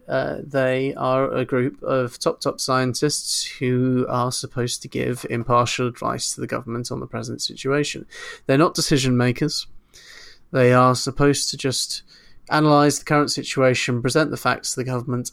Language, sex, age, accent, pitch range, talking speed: English, male, 30-49, British, 120-135 Hz, 165 wpm